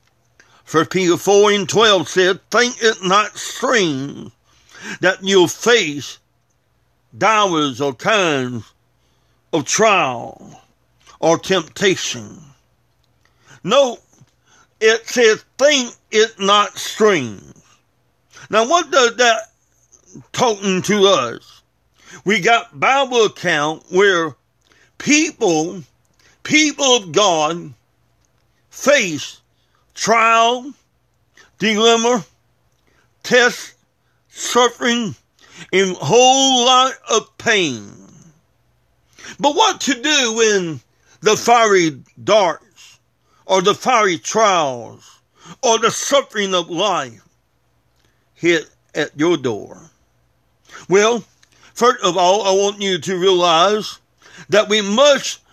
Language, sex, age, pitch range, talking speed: English, male, 60-79, 165-240 Hz, 95 wpm